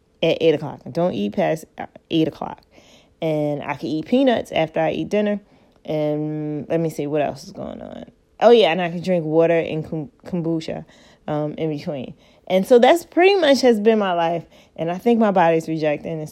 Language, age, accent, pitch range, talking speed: English, 20-39, American, 155-200 Hz, 195 wpm